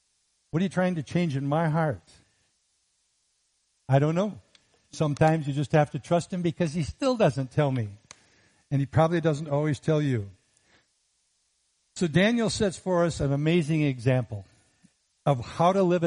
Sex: male